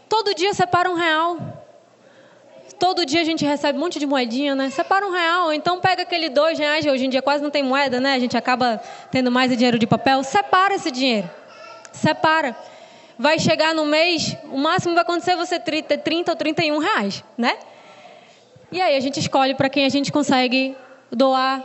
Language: Portuguese